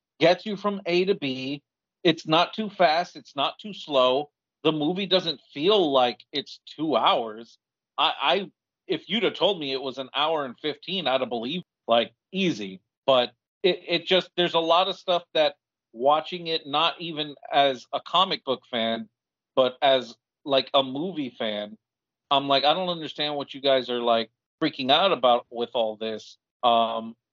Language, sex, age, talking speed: English, male, 40-59, 180 wpm